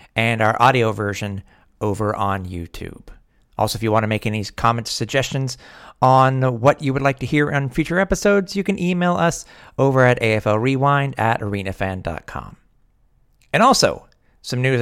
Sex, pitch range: male, 105-135 Hz